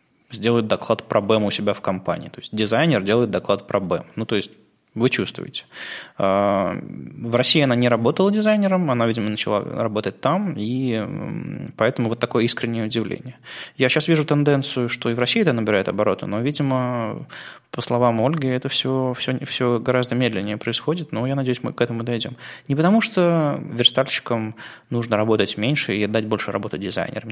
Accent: native